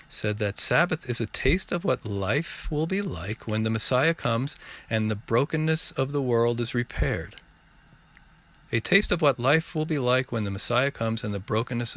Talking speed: 195 wpm